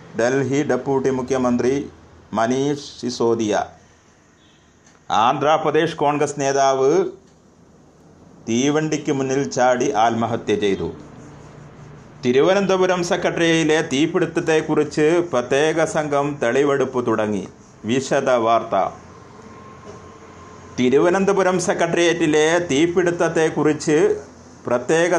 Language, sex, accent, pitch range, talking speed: Malayalam, male, native, 130-165 Hz, 60 wpm